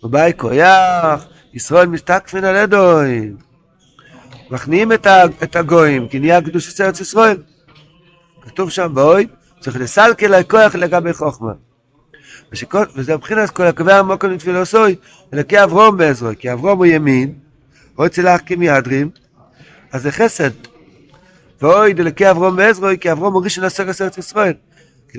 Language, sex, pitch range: Hebrew, male, 140-185 Hz